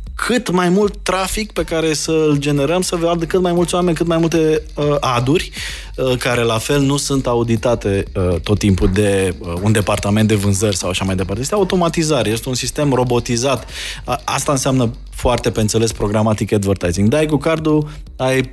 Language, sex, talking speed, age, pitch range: Romanian, male, 170 wpm, 20-39, 110-150 Hz